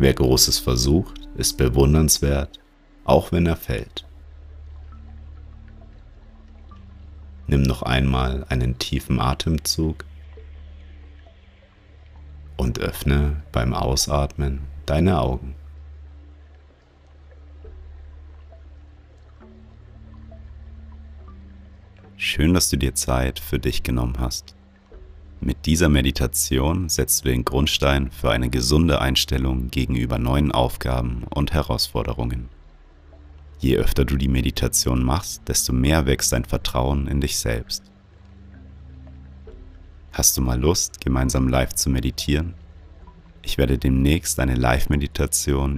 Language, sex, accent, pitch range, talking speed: German, male, German, 65-75 Hz, 95 wpm